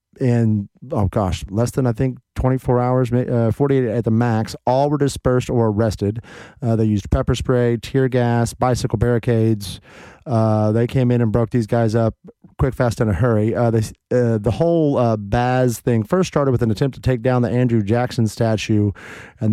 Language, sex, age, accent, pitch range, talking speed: English, male, 30-49, American, 110-125 Hz, 195 wpm